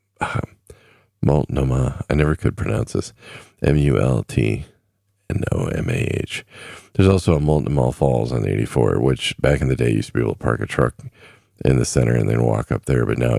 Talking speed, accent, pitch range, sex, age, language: 170 wpm, American, 75-100 Hz, male, 40-59, English